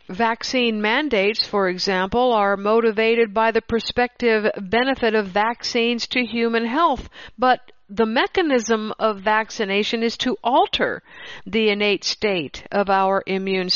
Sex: female